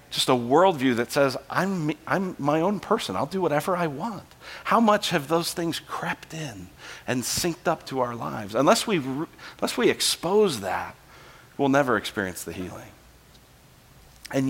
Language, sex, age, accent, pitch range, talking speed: English, male, 40-59, American, 150-225 Hz, 160 wpm